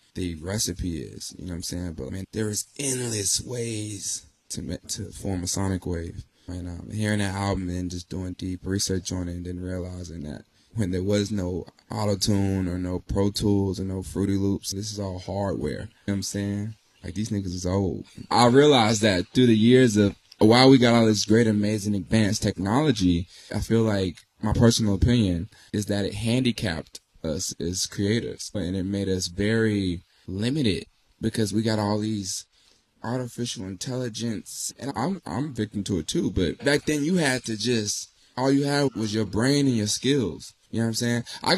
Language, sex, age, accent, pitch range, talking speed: English, male, 20-39, American, 95-115 Hz, 195 wpm